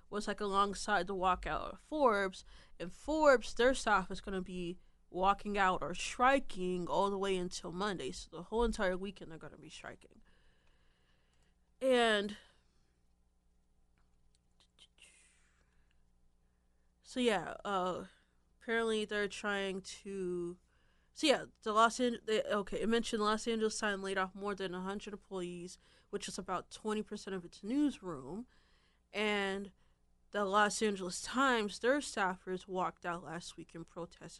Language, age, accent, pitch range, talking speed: English, 20-39, American, 175-220 Hz, 140 wpm